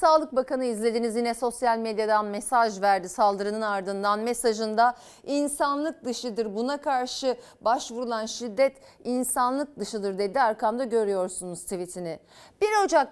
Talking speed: 115 wpm